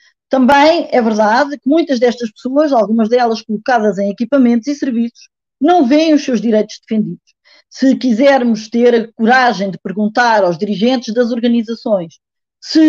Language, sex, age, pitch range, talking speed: Portuguese, female, 20-39, 210-270 Hz, 150 wpm